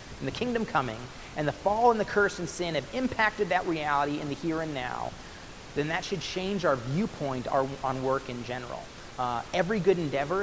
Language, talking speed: English, 200 wpm